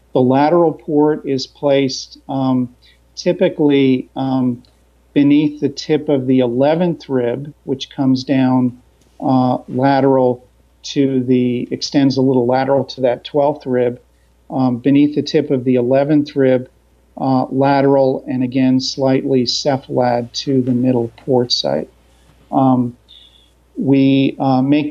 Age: 50-69